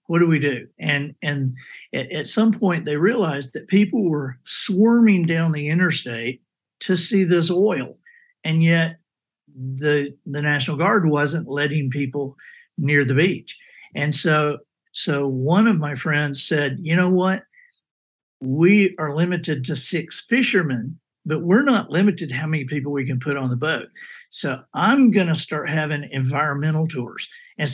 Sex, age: male, 60-79